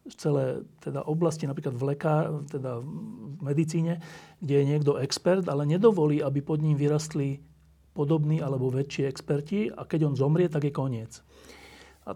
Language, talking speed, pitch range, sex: Slovak, 160 wpm, 130-155 Hz, male